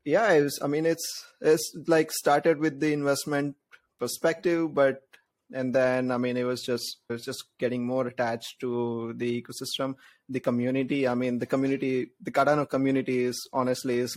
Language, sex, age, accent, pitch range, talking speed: English, male, 20-39, Indian, 120-135 Hz, 180 wpm